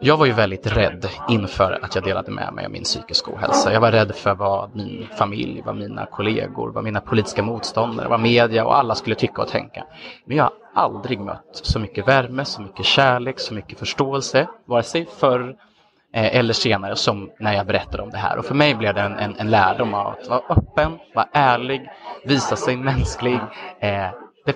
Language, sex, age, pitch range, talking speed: English, male, 30-49, 100-125 Hz, 200 wpm